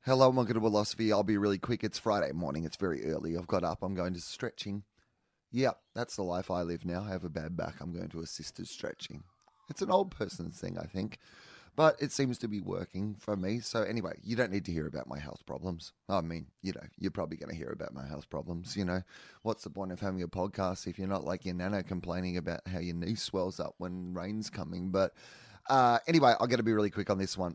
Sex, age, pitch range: male, 30-49, 90-110 Hz